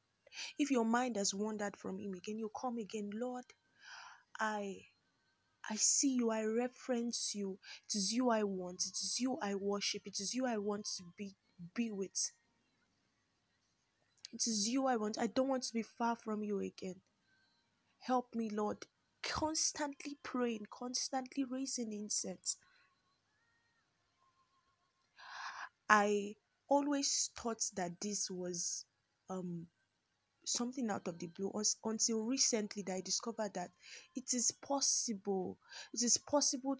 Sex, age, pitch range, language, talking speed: female, 20-39, 205-260 Hz, English, 135 wpm